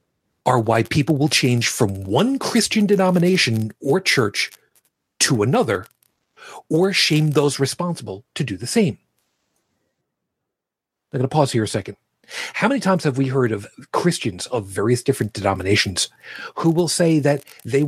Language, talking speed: English, 150 wpm